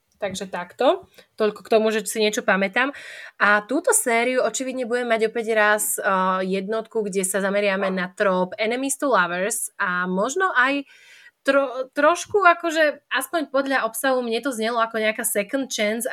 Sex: female